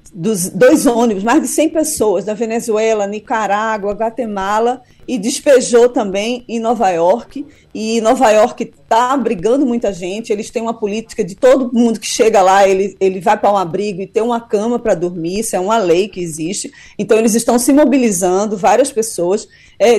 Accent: Brazilian